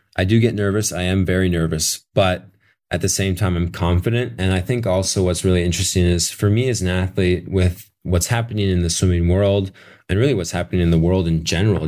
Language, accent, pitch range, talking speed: English, American, 90-105 Hz, 220 wpm